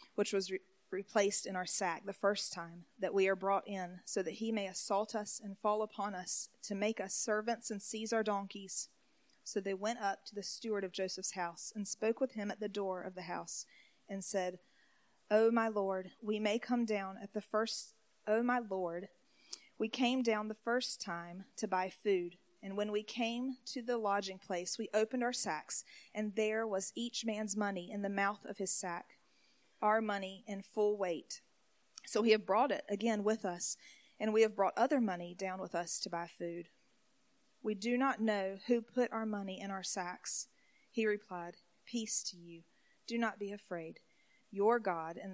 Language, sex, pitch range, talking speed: English, female, 190-225 Hz, 195 wpm